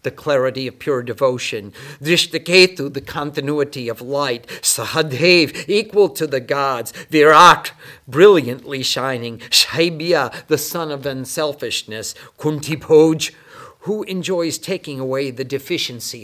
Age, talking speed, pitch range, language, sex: 50-69, 110 wpm, 145-185 Hz, English, male